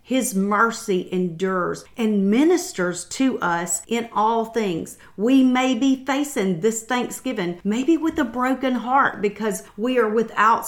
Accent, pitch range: American, 180-225 Hz